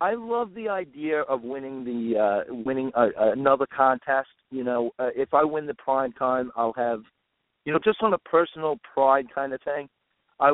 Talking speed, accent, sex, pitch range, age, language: 195 wpm, American, male, 120-145 Hz, 50-69, English